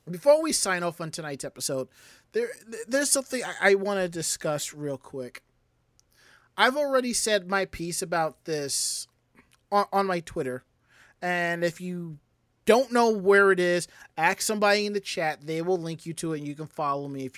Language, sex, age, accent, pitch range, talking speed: English, male, 30-49, American, 155-225 Hz, 185 wpm